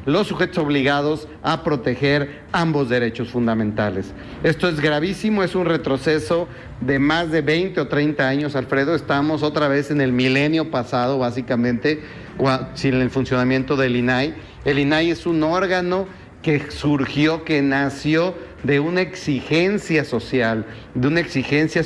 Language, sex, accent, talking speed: Spanish, male, Mexican, 140 wpm